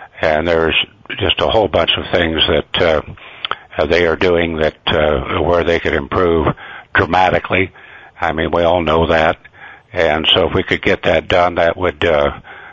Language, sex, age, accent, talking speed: English, male, 60-79, American, 175 wpm